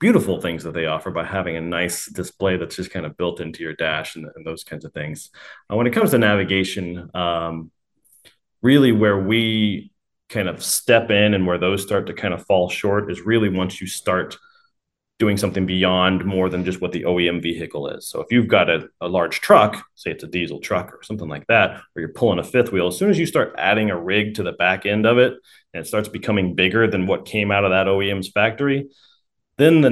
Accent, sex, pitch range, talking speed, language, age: American, male, 90-110 Hz, 230 wpm, English, 30-49